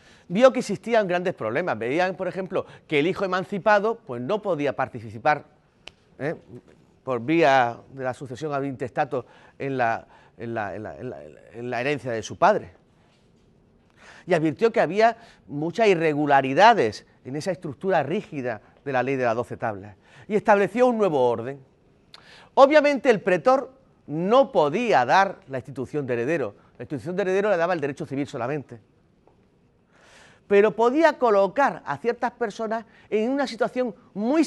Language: Spanish